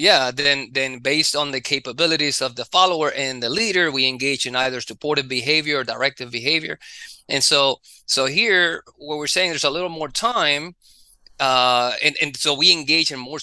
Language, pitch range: English, 120-145 Hz